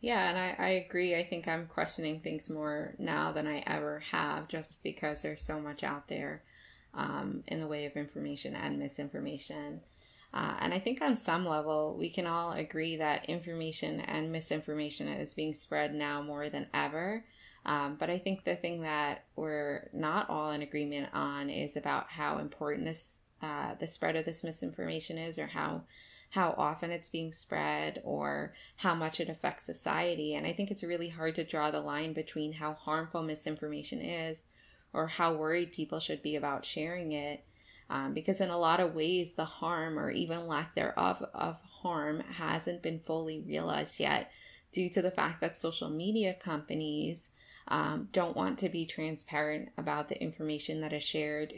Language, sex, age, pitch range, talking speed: English, female, 20-39, 150-170 Hz, 180 wpm